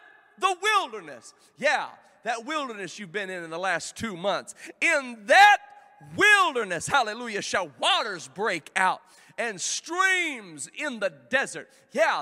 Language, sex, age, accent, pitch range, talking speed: English, male, 40-59, American, 200-310 Hz, 135 wpm